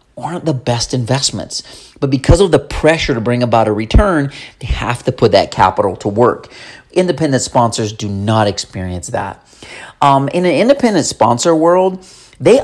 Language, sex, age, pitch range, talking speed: English, male, 40-59, 110-155 Hz, 165 wpm